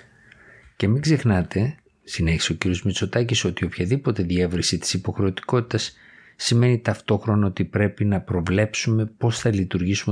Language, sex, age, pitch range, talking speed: Greek, male, 50-69, 85-105 Hz, 125 wpm